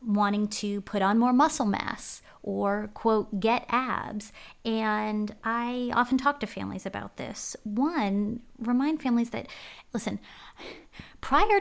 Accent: American